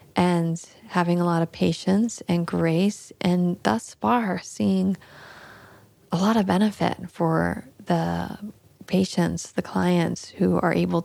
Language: English